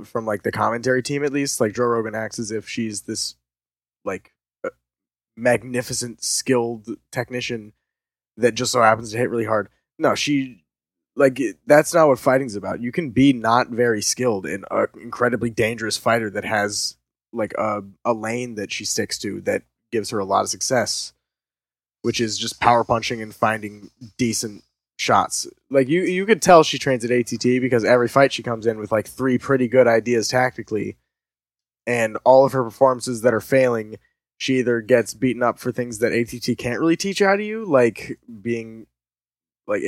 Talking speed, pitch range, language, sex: 180 wpm, 110-130 Hz, English, male